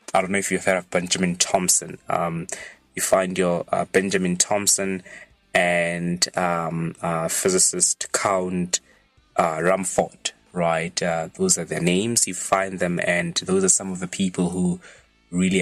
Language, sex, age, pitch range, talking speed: English, male, 20-39, 85-95 Hz, 160 wpm